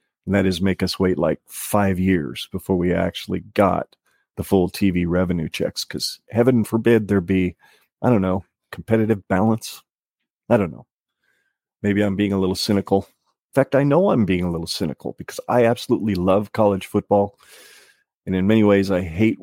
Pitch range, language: 90-105 Hz, English